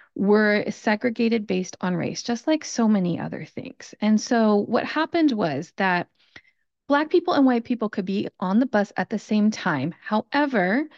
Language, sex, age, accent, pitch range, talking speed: English, female, 30-49, American, 190-245 Hz, 175 wpm